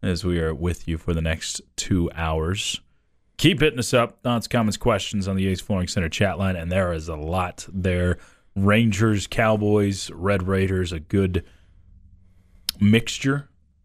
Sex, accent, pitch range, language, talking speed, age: male, American, 85-110 Hz, English, 160 wpm, 30-49